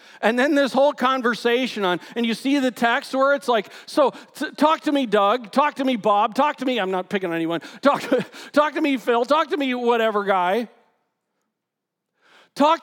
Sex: male